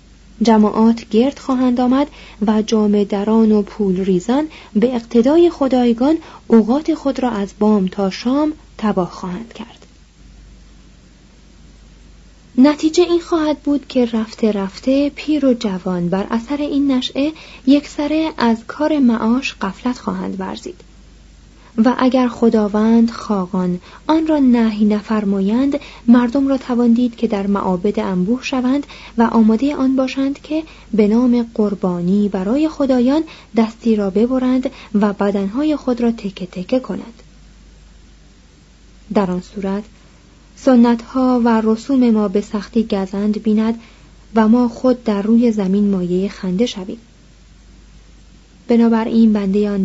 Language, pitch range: Persian, 205-260 Hz